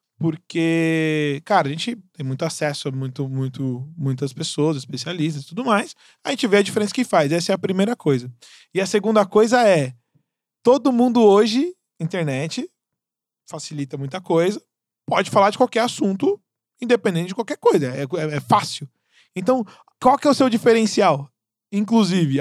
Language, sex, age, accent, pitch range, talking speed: Portuguese, male, 20-39, Brazilian, 155-230 Hz, 155 wpm